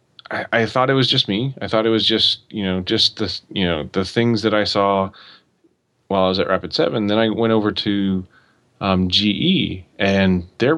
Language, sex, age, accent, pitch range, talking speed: English, male, 30-49, American, 95-110 Hz, 205 wpm